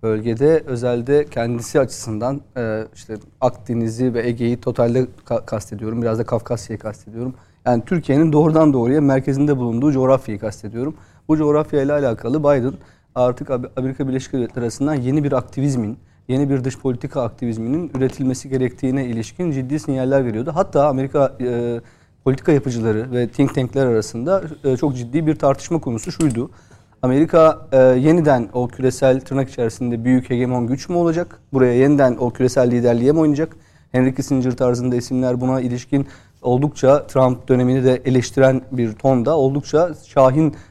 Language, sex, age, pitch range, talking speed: Turkish, male, 40-59, 120-145 Hz, 140 wpm